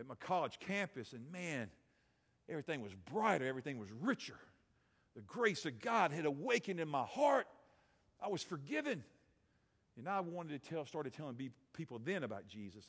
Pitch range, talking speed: 145-195 Hz, 165 wpm